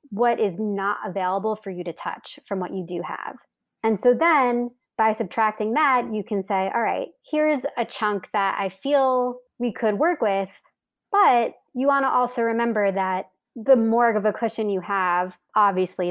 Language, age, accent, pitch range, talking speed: English, 20-39, American, 195-260 Hz, 185 wpm